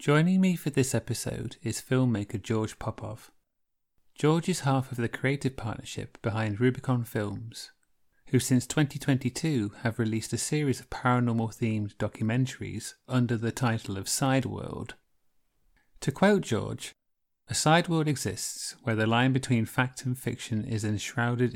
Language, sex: English, male